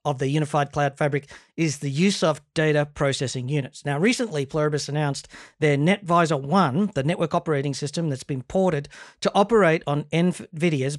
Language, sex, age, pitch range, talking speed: English, male, 40-59, 150-185 Hz, 165 wpm